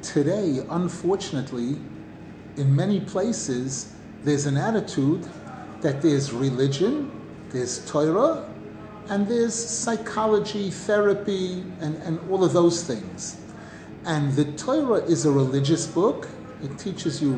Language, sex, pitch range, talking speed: English, male, 145-195 Hz, 115 wpm